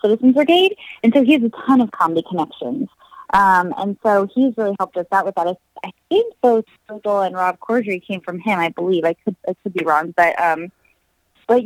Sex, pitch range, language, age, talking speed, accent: female, 175-240 Hz, English, 20-39, 215 wpm, American